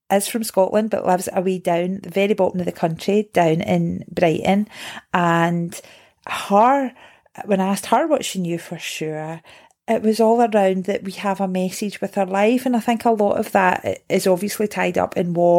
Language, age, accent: English, 30-49, British